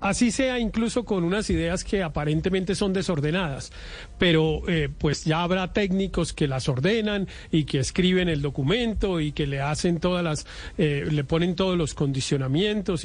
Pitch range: 155-200 Hz